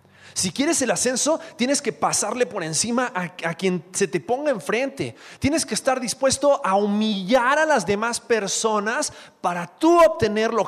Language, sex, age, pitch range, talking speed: Spanish, male, 30-49, 140-225 Hz, 170 wpm